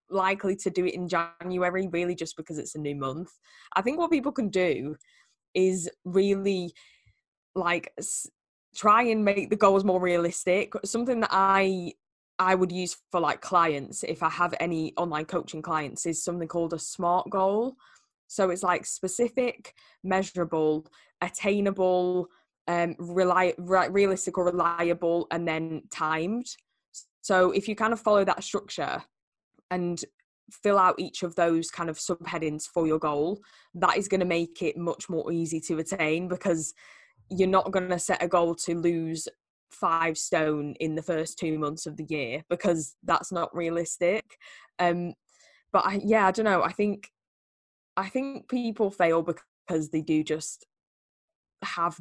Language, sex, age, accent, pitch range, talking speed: English, female, 10-29, British, 165-190 Hz, 160 wpm